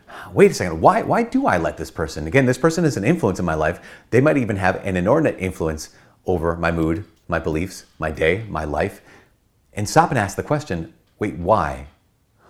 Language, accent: English, American